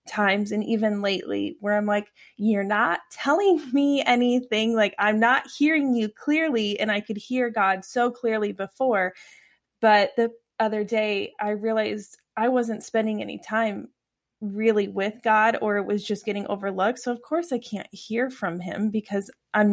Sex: female